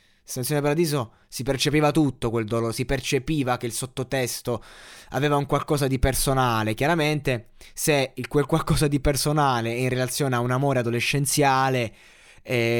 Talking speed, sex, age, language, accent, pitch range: 140 wpm, male, 20-39, Italian, native, 110-135 Hz